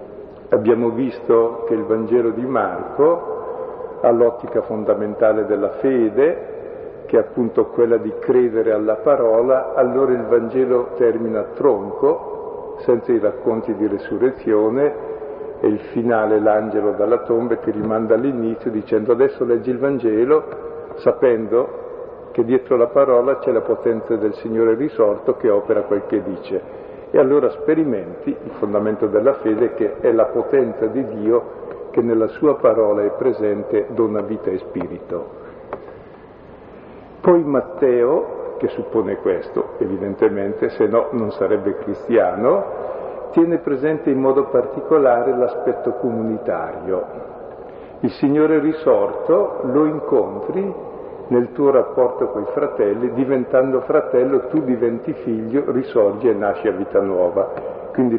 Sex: male